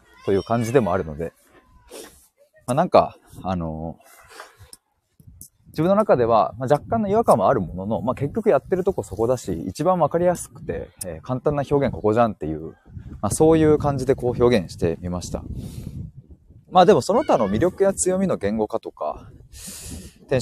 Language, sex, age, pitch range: Japanese, male, 20-39, 90-140 Hz